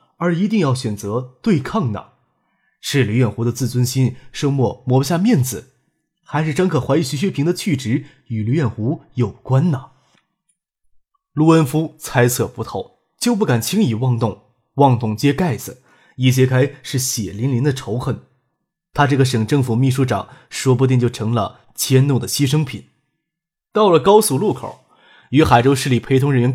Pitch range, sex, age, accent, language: 120-155 Hz, male, 20-39, native, Chinese